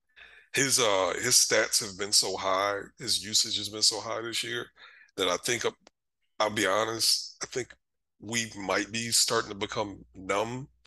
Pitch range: 105-130 Hz